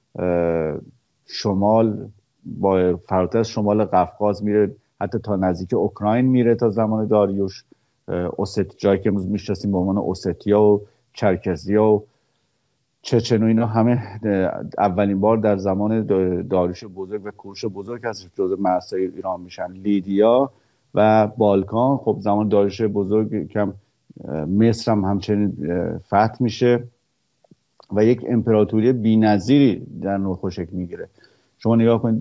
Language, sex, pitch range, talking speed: English, male, 95-110 Hz, 125 wpm